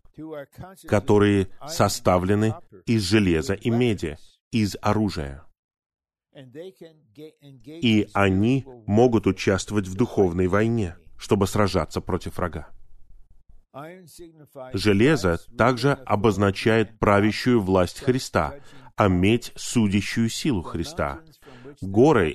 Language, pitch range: Russian, 95-125 Hz